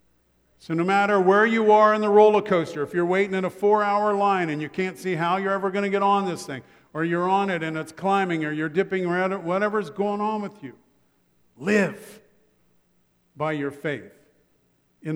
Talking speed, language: 200 wpm, English